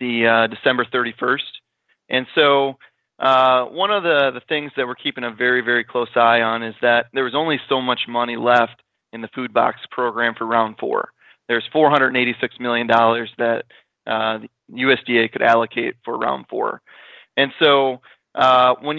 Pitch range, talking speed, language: 120-135 Hz, 170 wpm, English